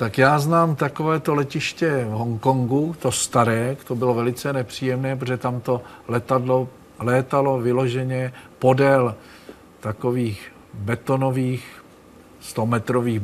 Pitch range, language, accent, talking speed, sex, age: 115-135 Hz, Czech, native, 100 wpm, male, 50-69